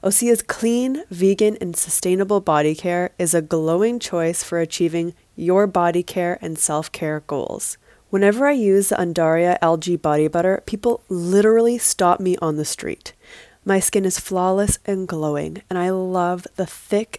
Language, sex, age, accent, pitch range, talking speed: English, female, 20-39, American, 170-205 Hz, 155 wpm